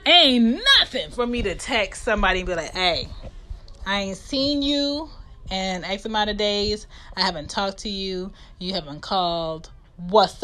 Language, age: English, 20-39